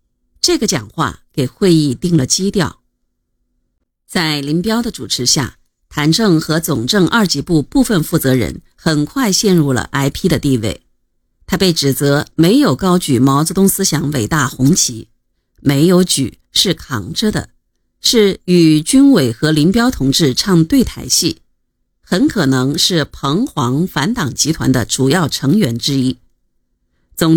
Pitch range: 135-190 Hz